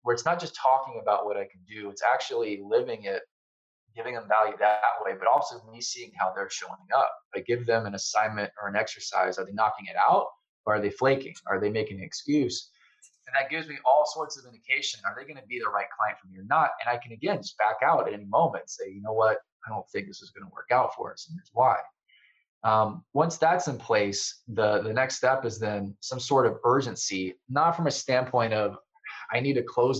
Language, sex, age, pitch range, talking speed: English, male, 20-39, 105-175 Hz, 245 wpm